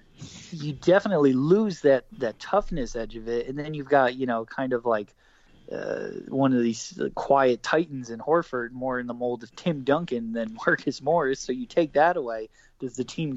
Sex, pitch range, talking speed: male, 115-155 Hz, 200 wpm